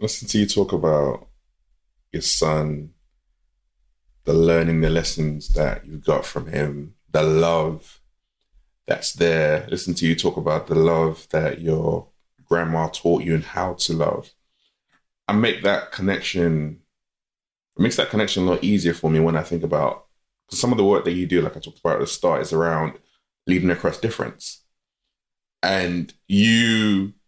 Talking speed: 165 wpm